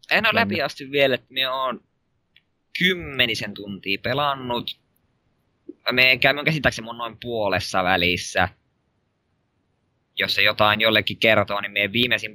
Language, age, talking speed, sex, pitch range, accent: Finnish, 20-39, 125 wpm, male, 100-120 Hz, native